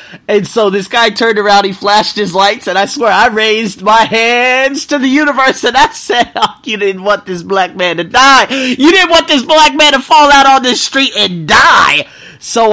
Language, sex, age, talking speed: English, male, 30-49, 220 wpm